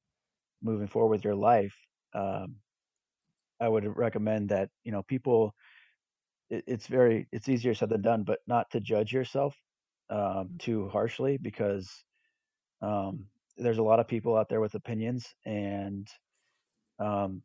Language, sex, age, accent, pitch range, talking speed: English, male, 30-49, American, 100-115 Hz, 140 wpm